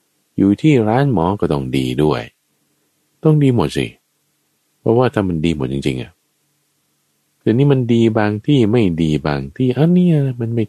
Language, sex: Thai, male